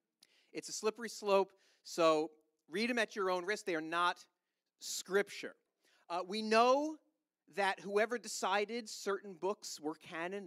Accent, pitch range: American, 155-220 Hz